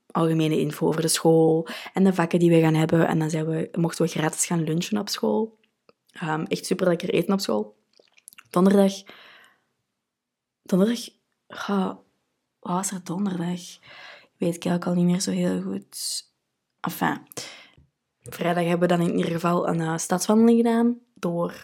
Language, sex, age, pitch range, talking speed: Dutch, female, 20-39, 165-200 Hz, 165 wpm